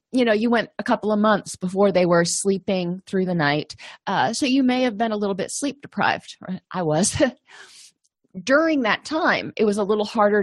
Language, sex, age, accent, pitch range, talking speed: English, female, 30-49, American, 185-230 Hz, 205 wpm